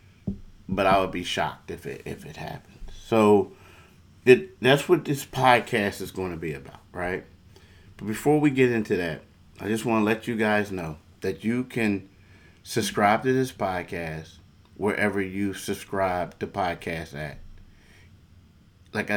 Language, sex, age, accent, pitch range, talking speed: English, male, 30-49, American, 90-110 Hz, 155 wpm